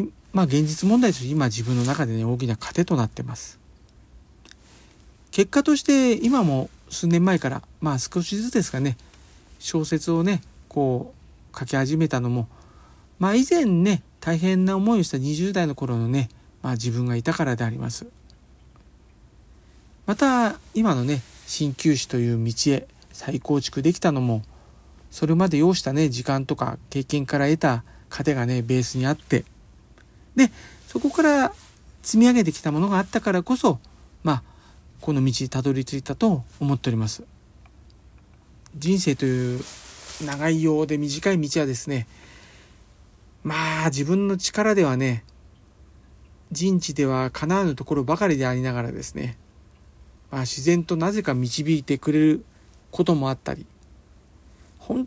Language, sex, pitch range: Japanese, male, 125-180 Hz